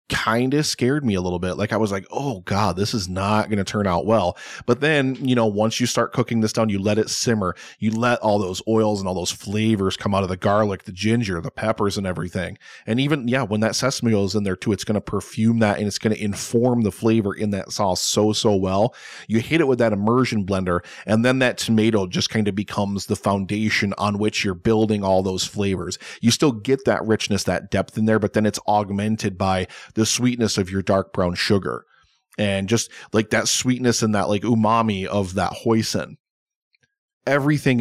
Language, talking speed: English, 225 wpm